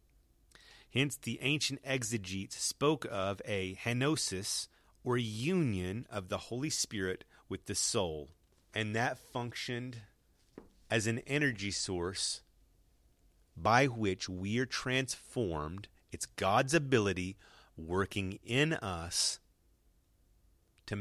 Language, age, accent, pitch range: English, 30-49, American, 90-120 Hz